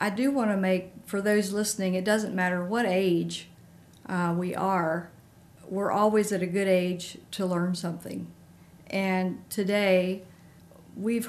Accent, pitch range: American, 175-200 Hz